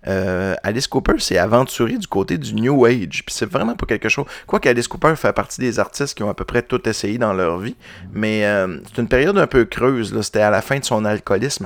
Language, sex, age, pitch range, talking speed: French, male, 30-49, 100-125 Hz, 250 wpm